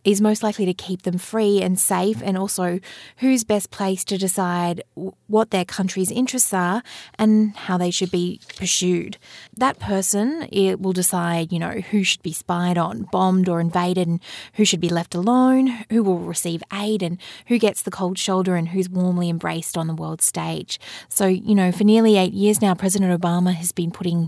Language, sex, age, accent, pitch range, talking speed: English, female, 20-39, Australian, 170-200 Hz, 195 wpm